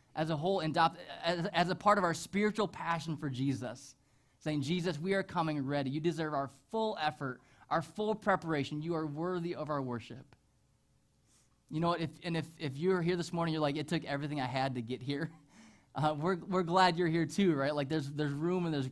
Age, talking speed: 20-39, 215 wpm